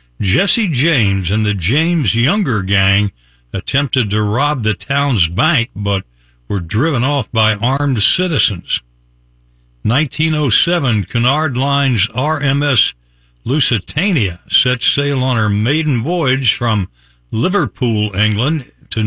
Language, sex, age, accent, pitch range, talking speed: English, male, 60-79, American, 95-140 Hz, 110 wpm